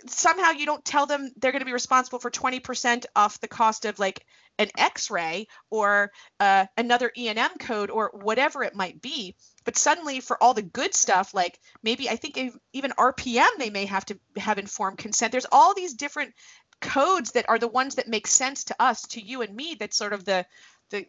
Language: English